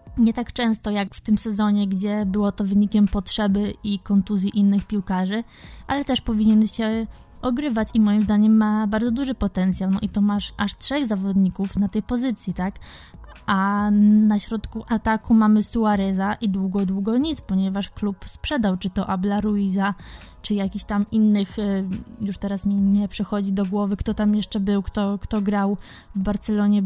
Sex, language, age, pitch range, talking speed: female, Polish, 20-39, 200-225 Hz, 170 wpm